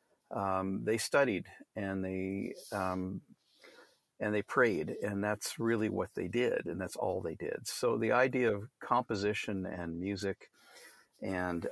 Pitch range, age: 95-110 Hz, 50-69